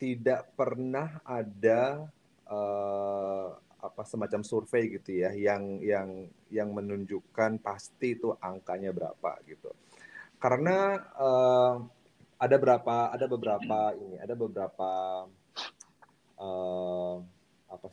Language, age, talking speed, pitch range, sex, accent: Indonesian, 30-49, 95 wpm, 100-135 Hz, male, native